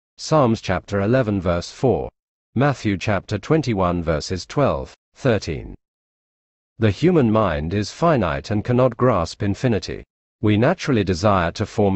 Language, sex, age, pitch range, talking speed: English, male, 40-59, 90-125 Hz, 125 wpm